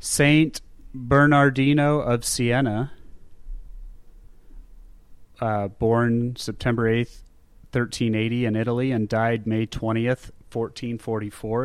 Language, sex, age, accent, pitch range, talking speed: English, male, 30-49, American, 105-125 Hz, 80 wpm